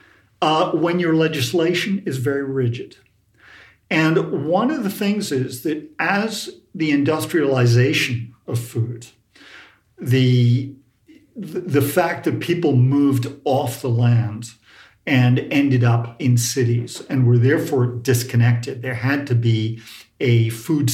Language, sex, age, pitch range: English, male, 50-69, 120-145 Hz